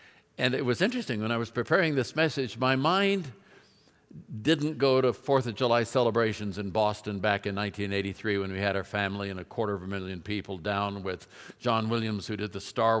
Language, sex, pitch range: English, male, 110-135 Hz